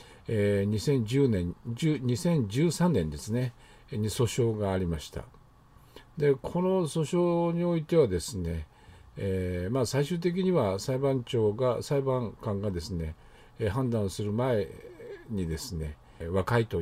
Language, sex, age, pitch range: Japanese, male, 50-69, 90-135 Hz